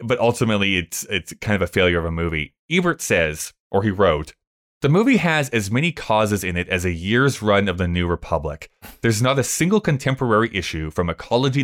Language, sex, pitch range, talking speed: English, male, 90-130 Hz, 205 wpm